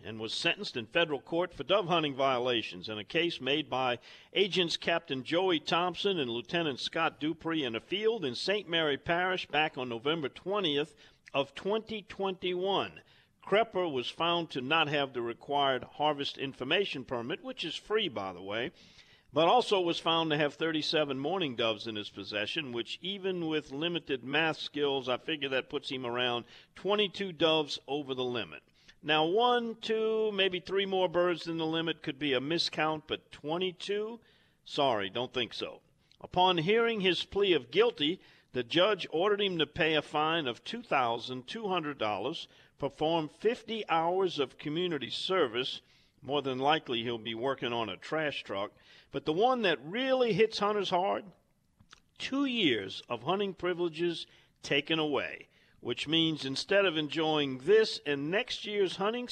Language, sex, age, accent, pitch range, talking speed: English, male, 50-69, American, 135-190 Hz, 160 wpm